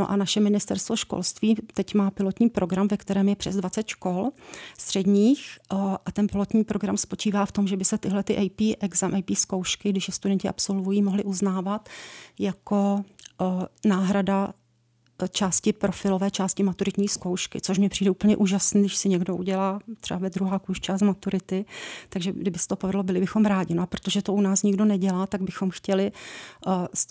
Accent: native